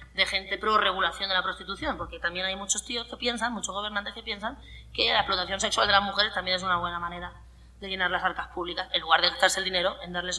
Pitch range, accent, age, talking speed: 180-275 Hz, Spanish, 20-39, 245 wpm